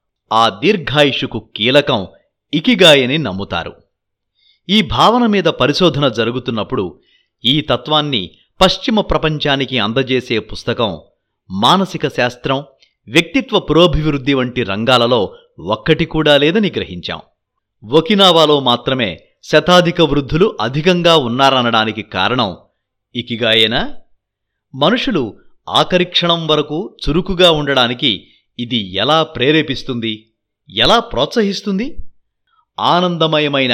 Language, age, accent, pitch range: Telugu, 30-49, native, 115-175 Hz